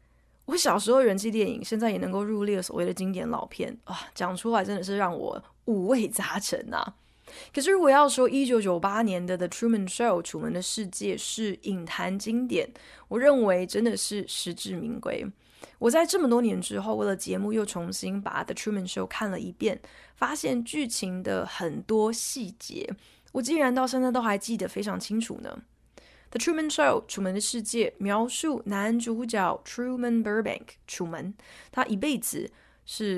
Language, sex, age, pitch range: Chinese, female, 20-39, 190-240 Hz